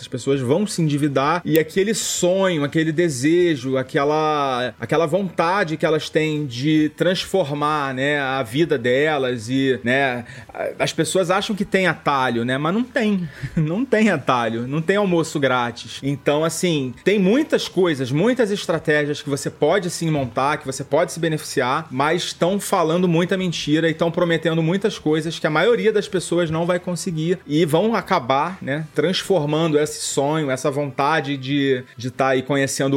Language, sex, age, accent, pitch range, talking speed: Portuguese, male, 30-49, Brazilian, 135-170 Hz, 165 wpm